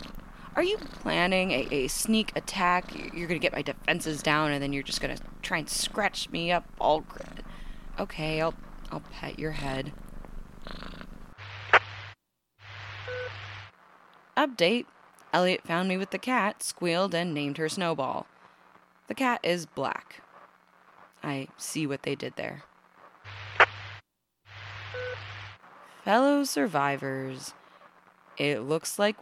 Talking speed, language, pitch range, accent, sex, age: 120 wpm, English, 140-205 Hz, American, female, 20-39